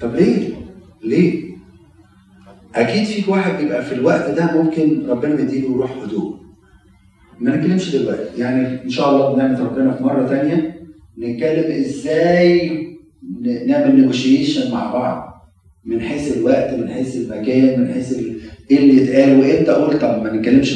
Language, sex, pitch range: Arabic, male, 100-160 Hz